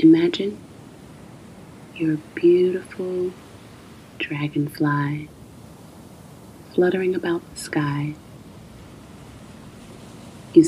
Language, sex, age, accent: English, female, 30-49, American